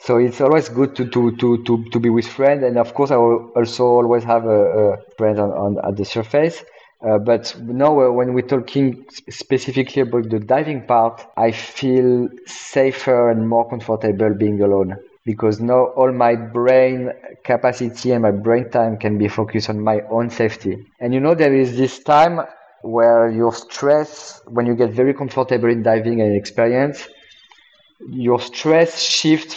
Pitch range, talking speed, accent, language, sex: 115-130 Hz, 175 wpm, French, English, male